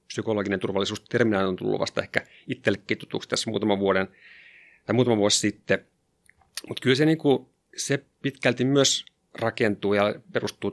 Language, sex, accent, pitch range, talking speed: Finnish, male, native, 100-115 Hz, 145 wpm